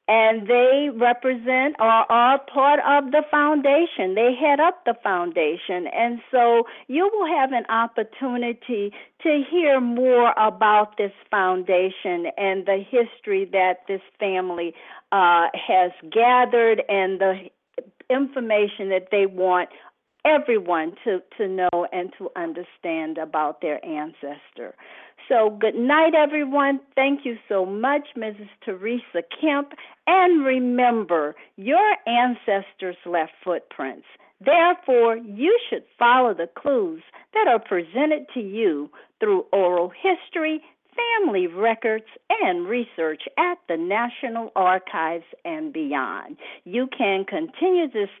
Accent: American